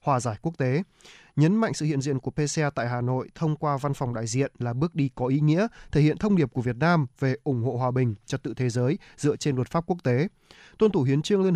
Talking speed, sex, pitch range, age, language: 275 wpm, male, 130-160 Hz, 20-39, Vietnamese